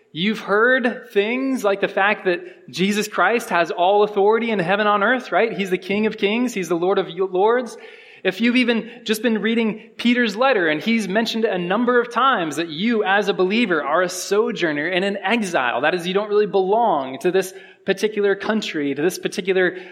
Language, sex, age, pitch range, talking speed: English, male, 20-39, 180-245 Hz, 200 wpm